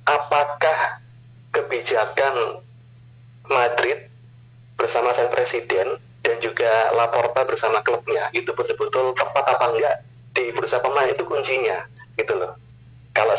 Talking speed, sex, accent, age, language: 110 wpm, male, native, 30-49, Indonesian